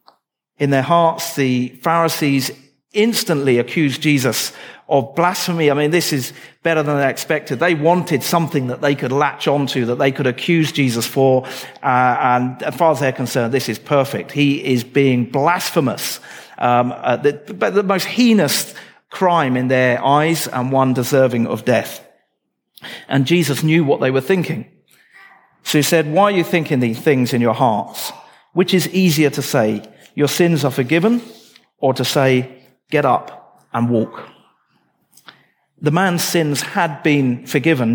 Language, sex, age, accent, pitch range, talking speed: English, male, 50-69, British, 130-165 Hz, 160 wpm